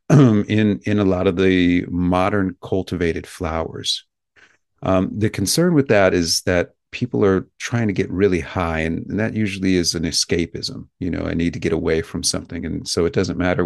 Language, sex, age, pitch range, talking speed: English, male, 40-59, 80-95 Hz, 195 wpm